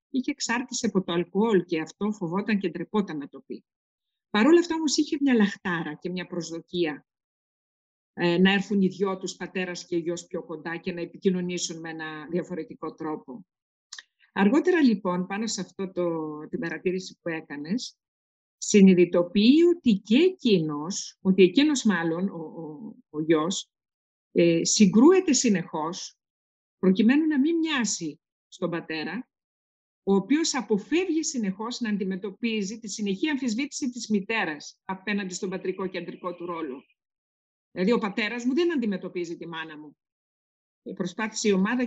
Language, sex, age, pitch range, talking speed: Greek, female, 50-69, 175-235 Hz, 140 wpm